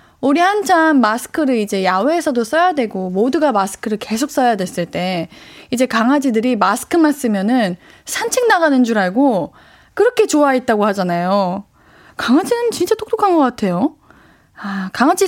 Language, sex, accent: Korean, female, native